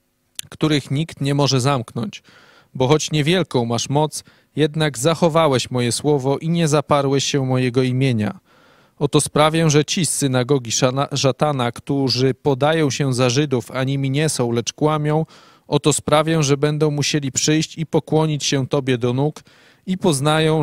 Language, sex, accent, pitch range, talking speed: Polish, male, native, 130-155 Hz, 150 wpm